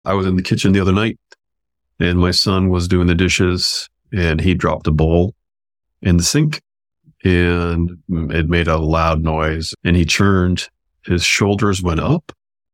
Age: 40-59